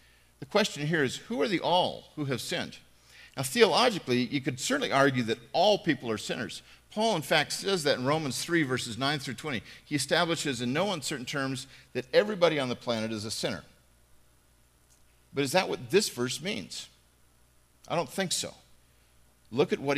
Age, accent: 50-69, American